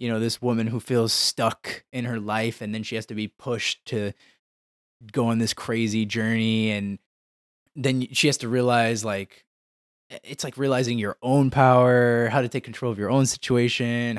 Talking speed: 185 wpm